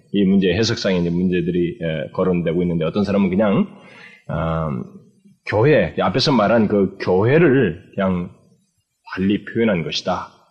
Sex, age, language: male, 20-39, Korean